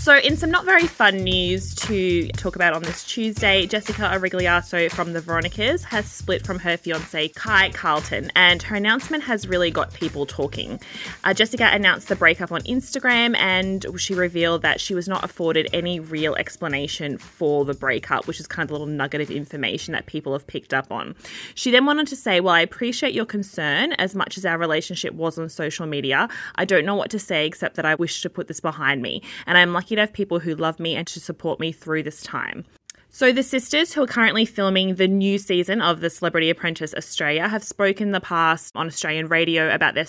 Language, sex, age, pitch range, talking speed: English, female, 20-39, 155-195 Hz, 215 wpm